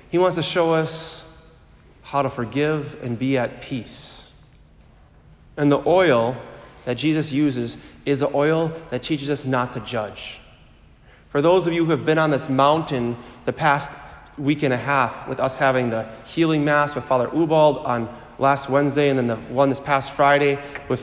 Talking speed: 180 wpm